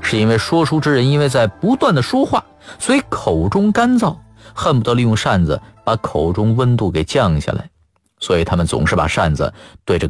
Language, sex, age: Chinese, male, 50-69